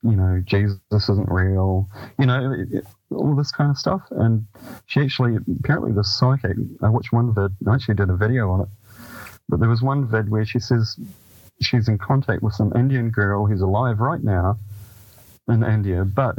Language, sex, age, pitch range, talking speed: English, male, 30-49, 100-125 Hz, 185 wpm